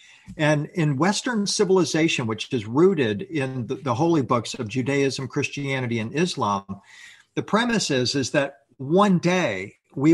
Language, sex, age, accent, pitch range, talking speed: English, male, 50-69, American, 125-160 Hz, 150 wpm